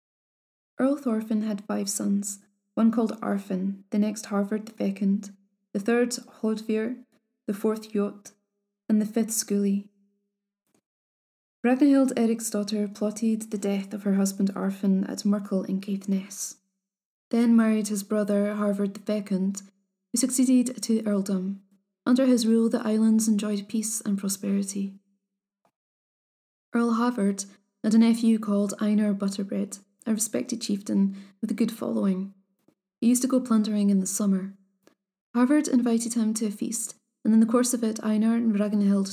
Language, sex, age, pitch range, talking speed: English, female, 20-39, 200-225 Hz, 145 wpm